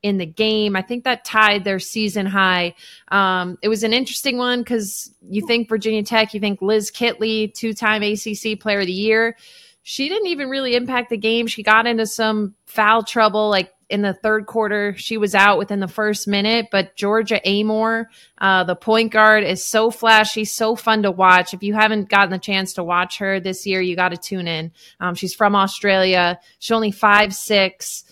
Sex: female